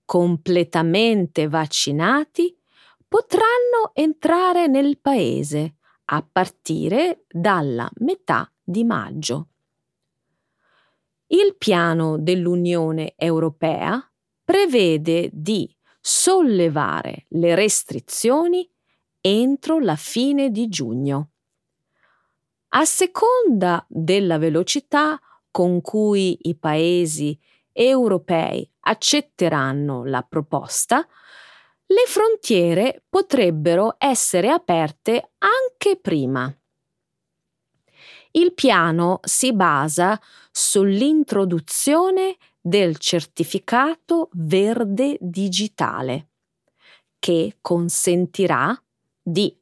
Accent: native